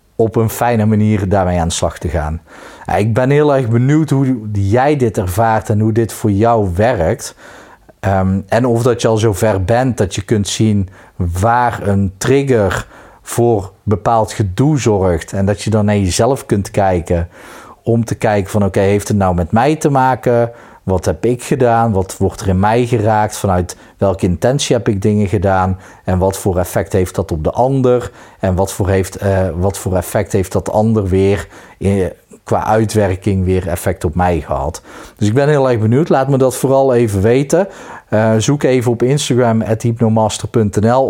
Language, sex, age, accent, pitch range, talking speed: Dutch, male, 40-59, Dutch, 90-115 Hz, 185 wpm